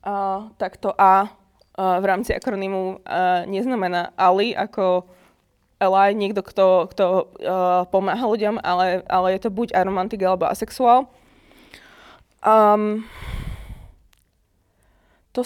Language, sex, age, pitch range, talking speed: Slovak, female, 20-39, 185-230 Hz, 115 wpm